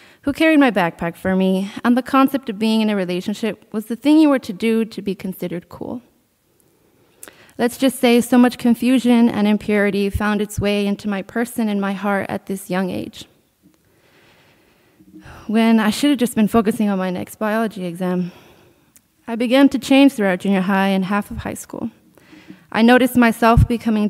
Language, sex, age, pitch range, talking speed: English, female, 20-39, 195-240 Hz, 185 wpm